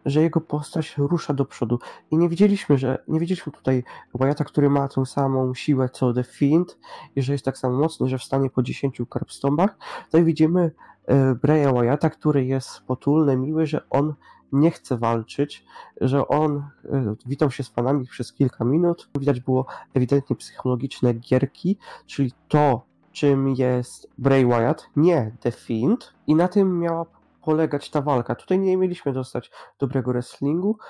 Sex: male